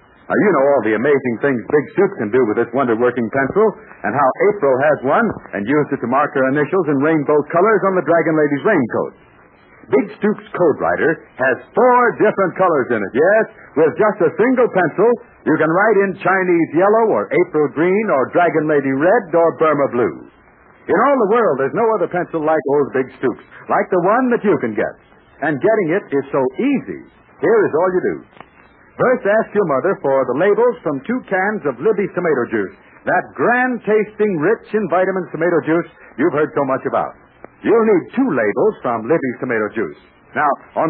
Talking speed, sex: 190 wpm, male